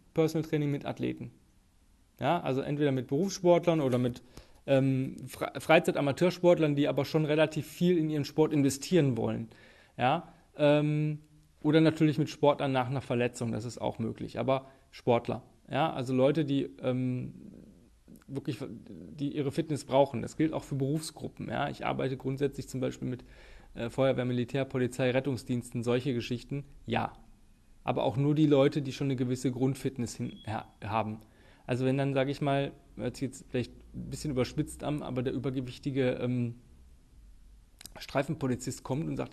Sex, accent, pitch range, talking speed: male, German, 120-140 Hz, 155 wpm